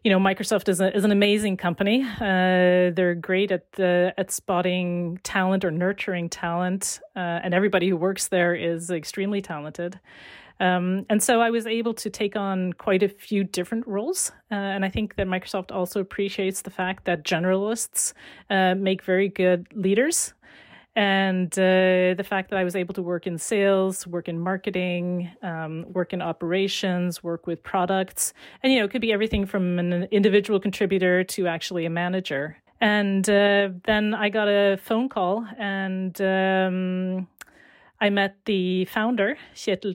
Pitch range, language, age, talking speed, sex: 180-205 Hz, English, 30-49, 170 wpm, female